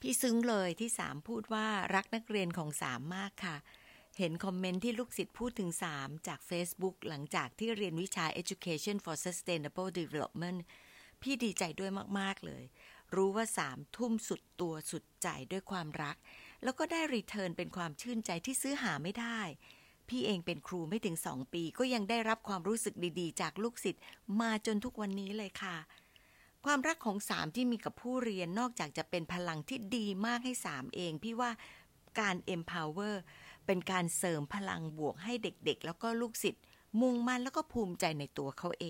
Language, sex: Thai, female